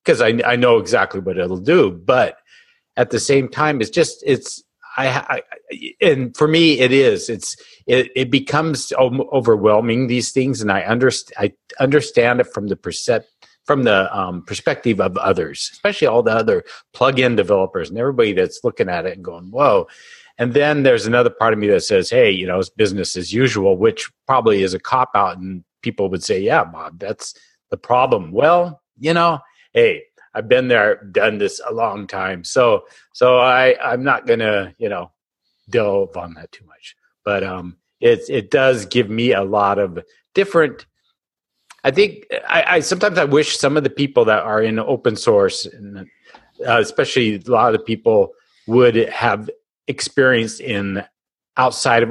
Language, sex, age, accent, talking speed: English, male, 50-69, American, 180 wpm